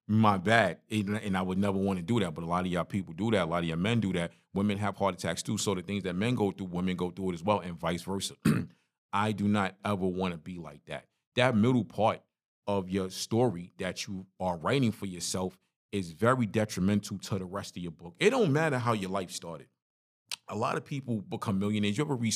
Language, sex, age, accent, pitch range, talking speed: English, male, 40-59, American, 95-110 Hz, 245 wpm